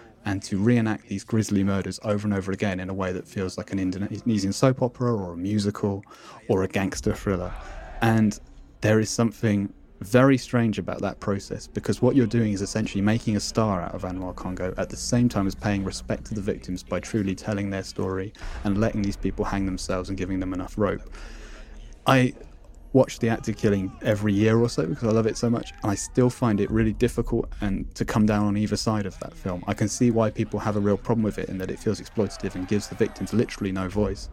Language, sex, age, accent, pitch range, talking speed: English, male, 20-39, British, 95-110 Hz, 230 wpm